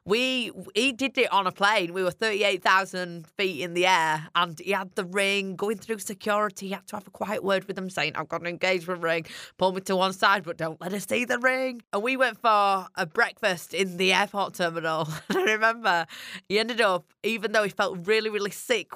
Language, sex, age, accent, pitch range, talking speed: English, female, 20-39, British, 180-235 Hz, 225 wpm